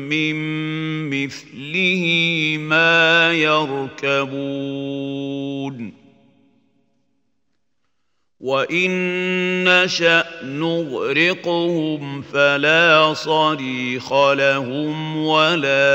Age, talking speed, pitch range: 50-69, 40 wpm, 135-165 Hz